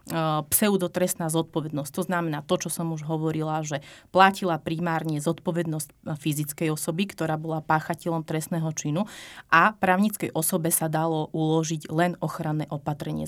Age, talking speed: 30-49, 130 wpm